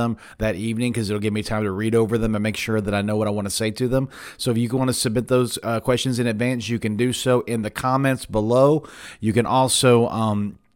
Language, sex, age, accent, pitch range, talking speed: English, male, 30-49, American, 105-125 Hz, 270 wpm